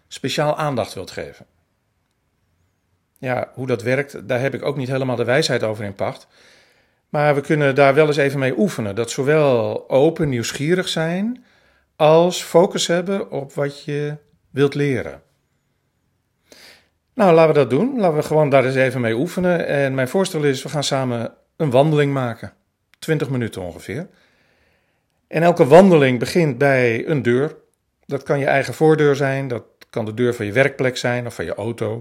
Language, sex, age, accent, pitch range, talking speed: Dutch, male, 50-69, Dutch, 110-150 Hz, 175 wpm